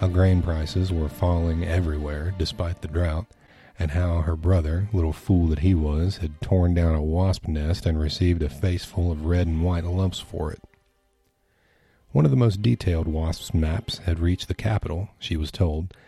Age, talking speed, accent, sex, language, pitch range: 40-59, 185 wpm, American, male, English, 85-100 Hz